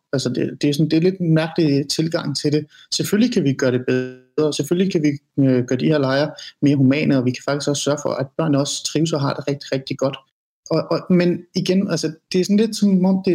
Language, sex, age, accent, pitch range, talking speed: Danish, male, 30-49, native, 140-175 Hz, 265 wpm